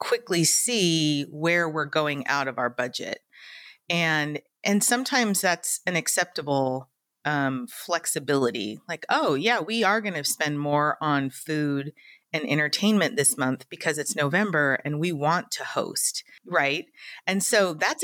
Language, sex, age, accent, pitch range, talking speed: English, female, 30-49, American, 150-215 Hz, 145 wpm